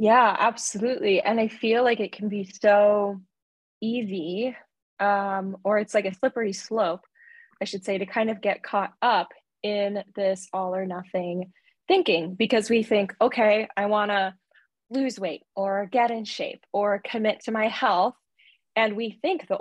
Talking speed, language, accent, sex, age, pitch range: 170 wpm, English, American, female, 10-29, 190-225 Hz